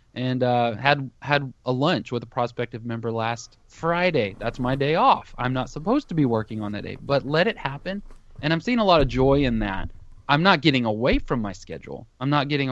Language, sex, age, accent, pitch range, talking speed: English, male, 20-39, American, 115-140 Hz, 225 wpm